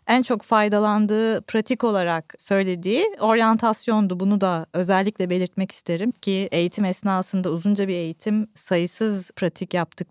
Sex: female